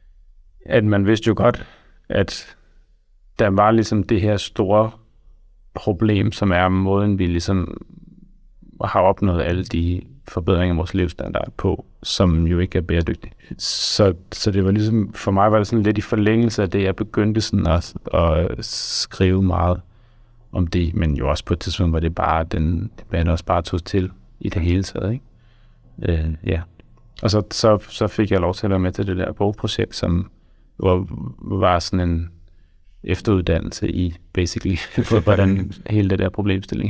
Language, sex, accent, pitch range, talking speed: Danish, male, native, 90-110 Hz, 175 wpm